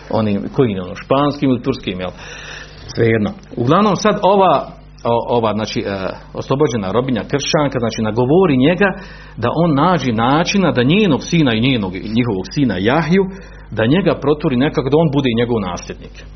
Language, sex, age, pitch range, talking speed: Croatian, male, 50-69, 110-150 Hz, 160 wpm